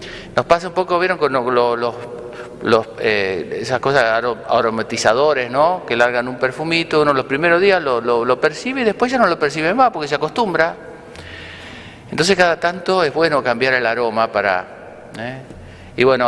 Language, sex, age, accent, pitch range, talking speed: Spanish, male, 50-69, Argentinian, 120-170 Hz, 160 wpm